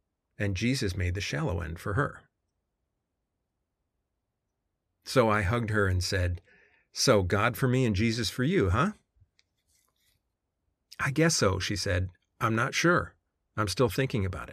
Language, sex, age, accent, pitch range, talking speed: English, male, 40-59, American, 90-115 Hz, 145 wpm